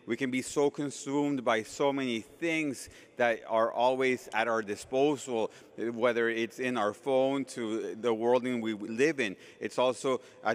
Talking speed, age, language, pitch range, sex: 170 wpm, 30-49, English, 120-145 Hz, male